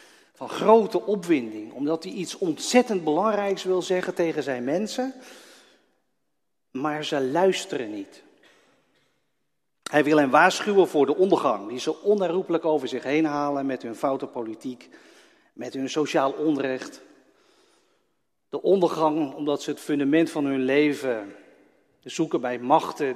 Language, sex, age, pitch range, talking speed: Dutch, male, 40-59, 130-185 Hz, 130 wpm